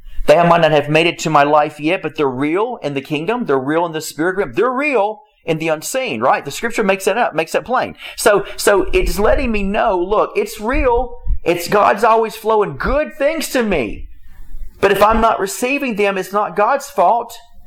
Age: 40-59